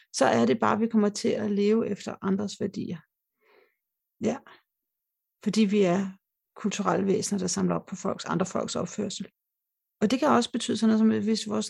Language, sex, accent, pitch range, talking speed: Danish, female, native, 195-220 Hz, 195 wpm